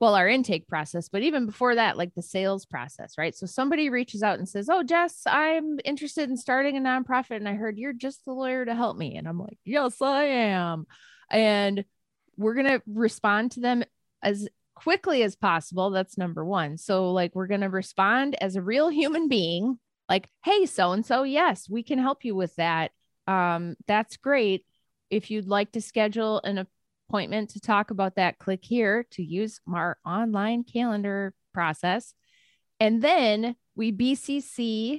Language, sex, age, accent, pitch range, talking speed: English, female, 20-39, American, 190-255 Hz, 180 wpm